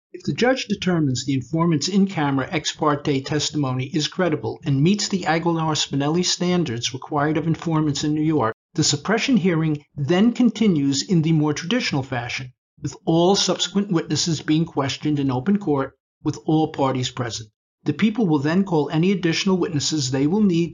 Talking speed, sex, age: 165 wpm, male, 50-69